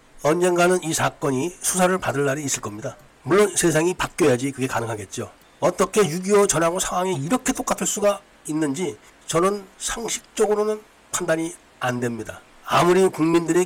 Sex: male